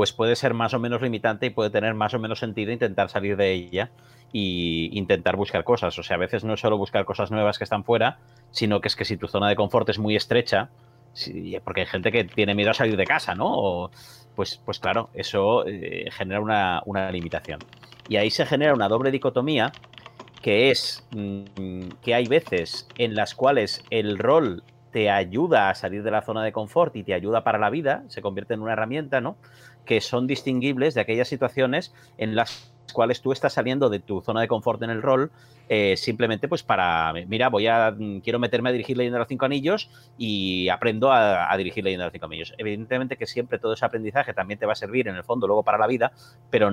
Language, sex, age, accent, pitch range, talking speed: Spanish, male, 30-49, Spanish, 100-120 Hz, 220 wpm